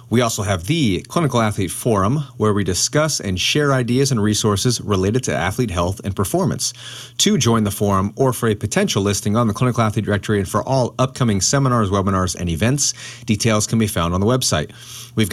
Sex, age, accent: male, 30-49, American